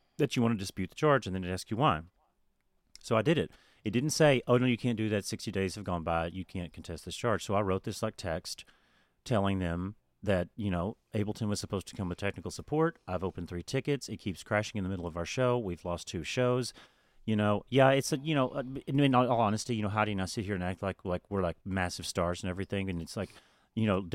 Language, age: English, 30-49